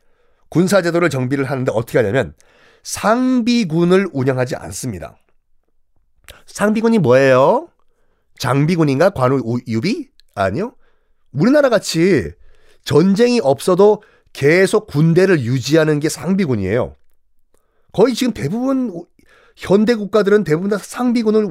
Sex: male